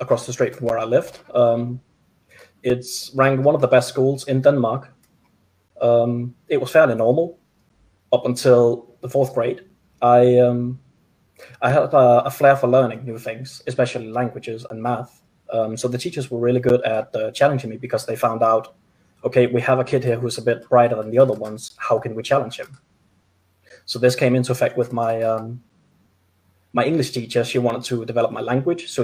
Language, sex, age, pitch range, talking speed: Czech, male, 20-39, 115-130 Hz, 195 wpm